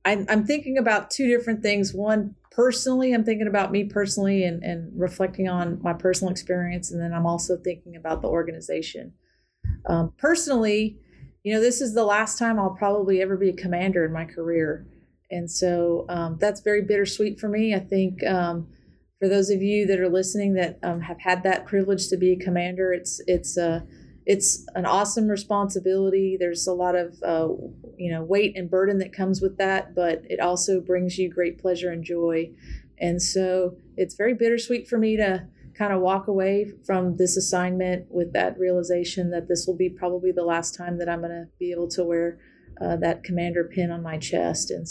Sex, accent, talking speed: female, American, 195 wpm